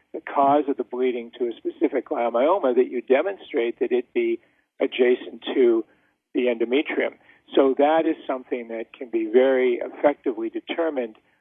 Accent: American